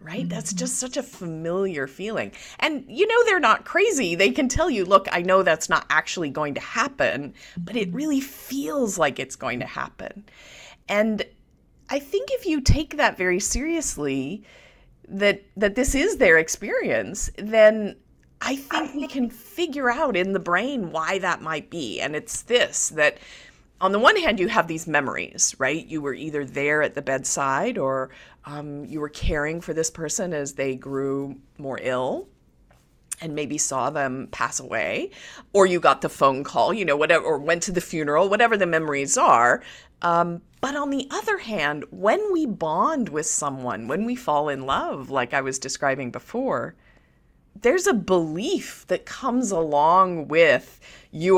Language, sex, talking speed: English, female, 175 wpm